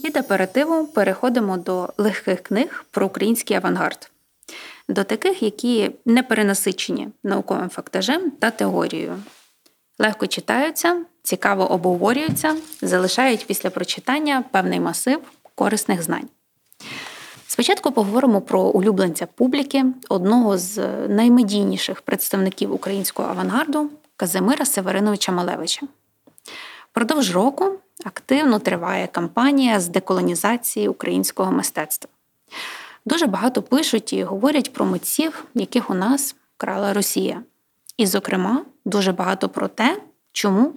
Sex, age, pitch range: female, 20-39, 195-270 Hz